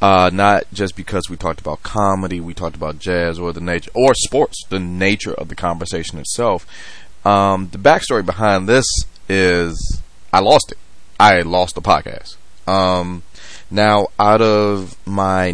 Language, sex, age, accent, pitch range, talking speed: English, male, 30-49, American, 85-105 Hz, 160 wpm